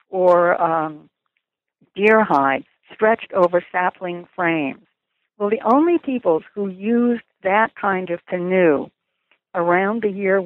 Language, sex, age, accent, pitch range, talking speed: English, female, 60-79, American, 175-215 Hz, 120 wpm